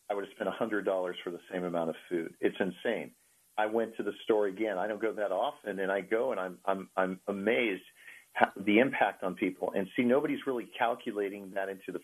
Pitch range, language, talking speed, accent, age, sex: 100-130 Hz, English, 225 wpm, American, 50-69, male